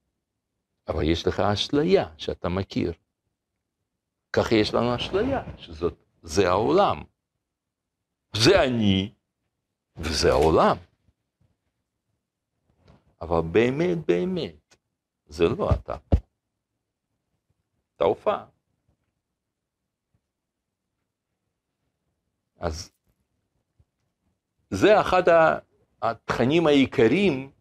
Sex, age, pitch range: male, 60-79, 95-135 Hz